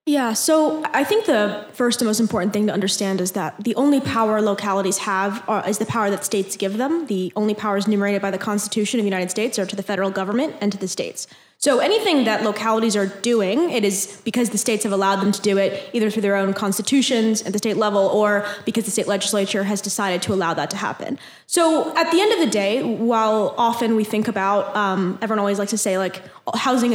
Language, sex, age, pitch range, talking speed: English, female, 10-29, 200-245 Hz, 230 wpm